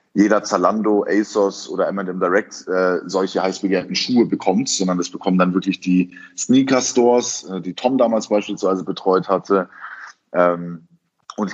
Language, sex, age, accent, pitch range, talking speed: German, male, 30-49, German, 95-115 Hz, 140 wpm